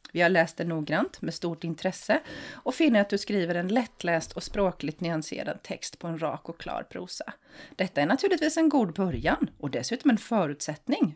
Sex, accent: female, native